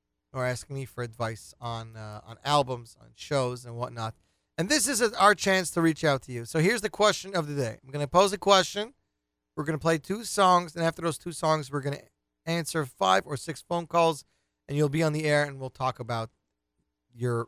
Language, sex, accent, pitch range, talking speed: English, male, American, 125-195 Hz, 225 wpm